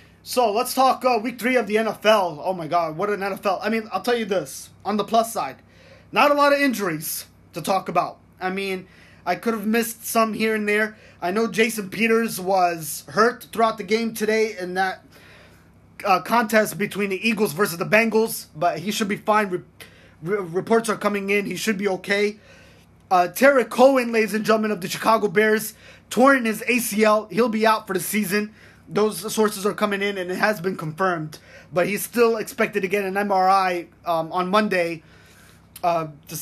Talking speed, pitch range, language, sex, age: 195 wpm, 170-215 Hz, English, male, 20-39